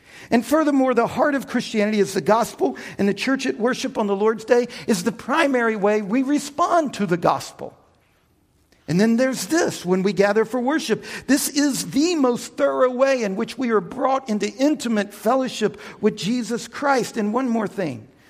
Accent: American